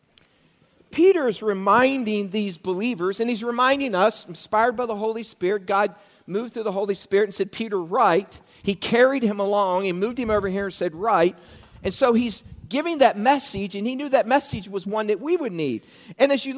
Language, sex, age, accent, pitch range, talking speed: English, male, 40-59, American, 195-270 Hz, 200 wpm